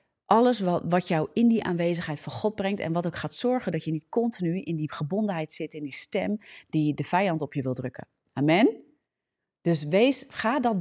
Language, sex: Dutch, female